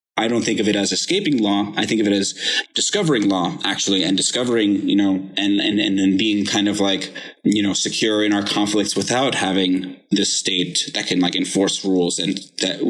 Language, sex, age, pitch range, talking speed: English, male, 20-39, 95-105 Hz, 210 wpm